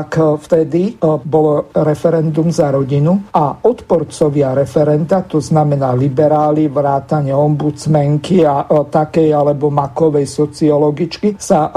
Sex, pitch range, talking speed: male, 150-175 Hz, 100 wpm